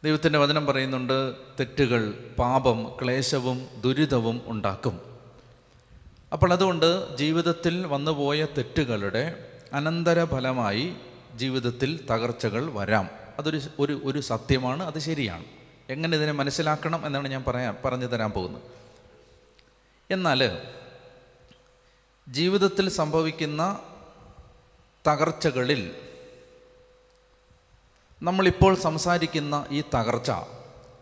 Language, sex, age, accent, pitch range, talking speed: Malayalam, male, 30-49, native, 125-165 Hz, 75 wpm